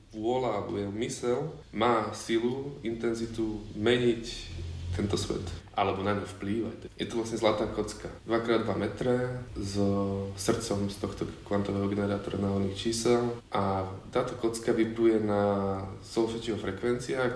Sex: male